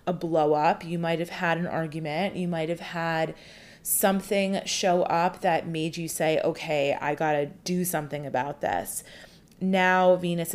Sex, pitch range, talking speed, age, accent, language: female, 160-195 Hz, 165 wpm, 30-49, American, English